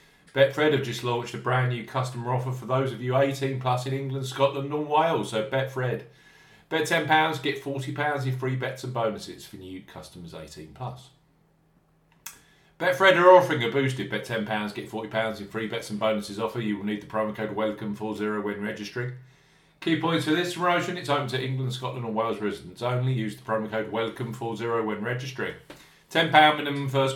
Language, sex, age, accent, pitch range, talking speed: English, male, 40-59, British, 110-140 Hz, 195 wpm